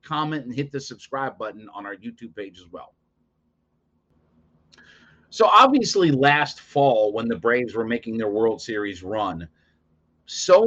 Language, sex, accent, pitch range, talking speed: English, male, American, 110-145 Hz, 145 wpm